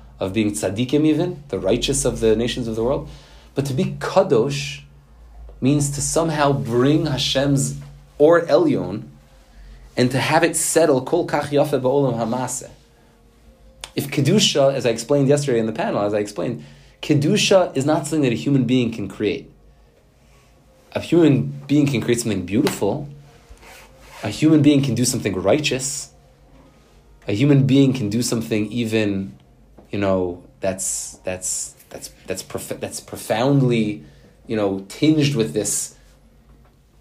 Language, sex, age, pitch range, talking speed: English, male, 30-49, 105-145 Hz, 140 wpm